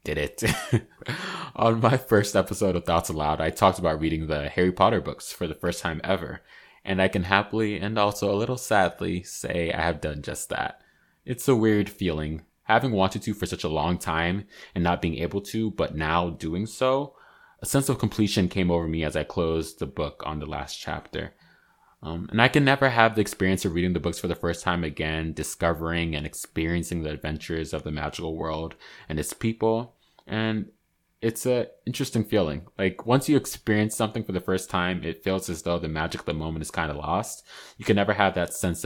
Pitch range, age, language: 80-105 Hz, 20-39, English